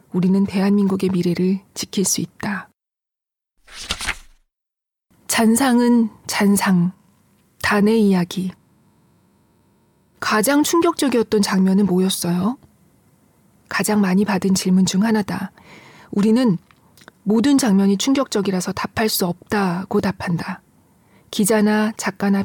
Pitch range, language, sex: 190-225 Hz, Korean, female